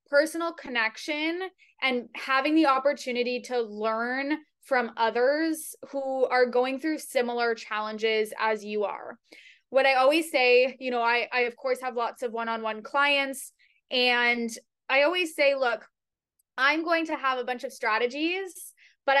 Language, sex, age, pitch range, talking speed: English, female, 20-39, 230-280 Hz, 150 wpm